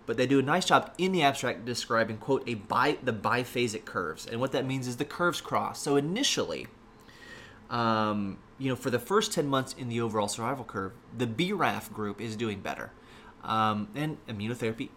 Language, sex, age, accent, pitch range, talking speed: English, male, 30-49, American, 105-125 Hz, 190 wpm